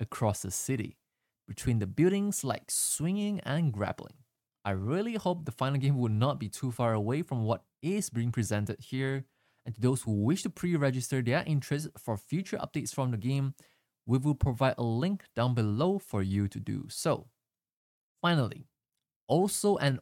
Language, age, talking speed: English, 20-39, 175 wpm